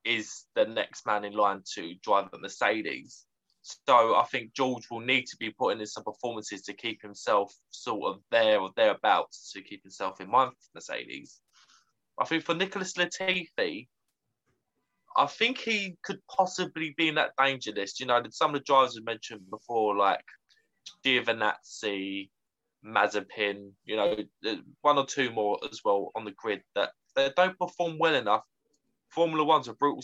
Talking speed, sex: 170 wpm, male